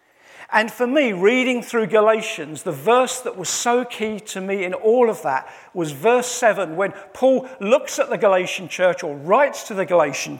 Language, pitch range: English, 180-235 Hz